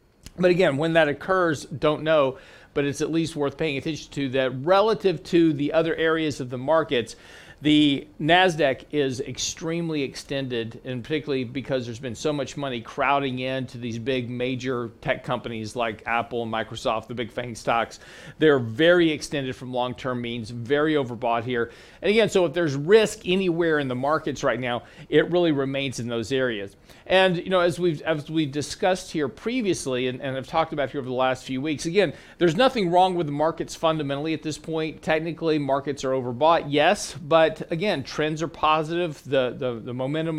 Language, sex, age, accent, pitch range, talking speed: English, male, 40-59, American, 130-165 Hz, 190 wpm